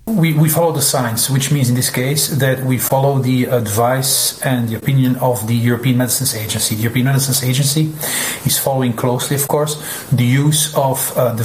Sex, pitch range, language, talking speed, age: male, 130-210 Hz, Bulgarian, 195 wpm, 40-59